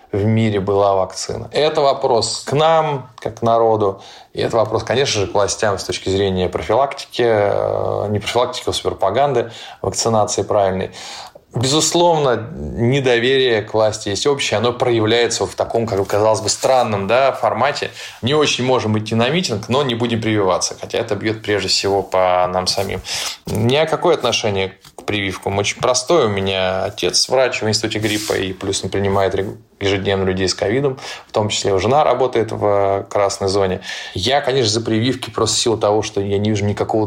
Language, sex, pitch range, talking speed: Russian, male, 95-115 Hz, 170 wpm